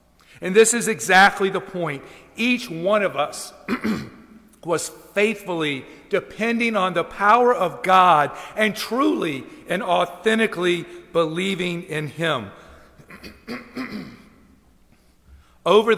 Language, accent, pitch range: English, American, 140-190 Hz